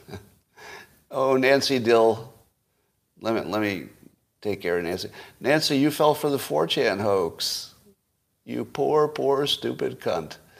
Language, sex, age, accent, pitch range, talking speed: English, male, 40-59, American, 105-140 Hz, 130 wpm